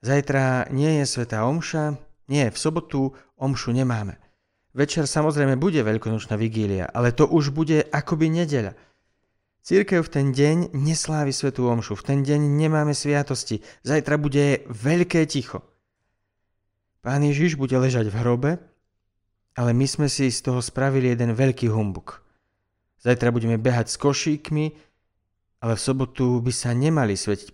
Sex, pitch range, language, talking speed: male, 105-145 Hz, Slovak, 140 wpm